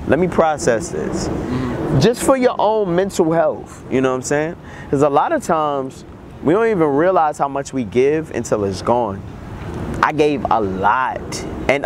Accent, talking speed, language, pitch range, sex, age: American, 180 wpm, English, 125-155 Hz, male, 20-39